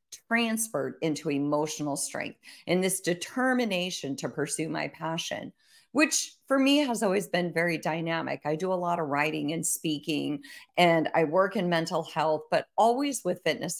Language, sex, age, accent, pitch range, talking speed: English, female, 40-59, American, 155-225 Hz, 160 wpm